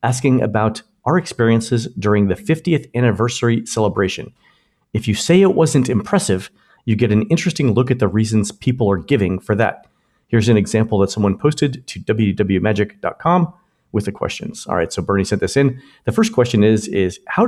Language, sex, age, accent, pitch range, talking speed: English, male, 50-69, American, 100-130 Hz, 180 wpm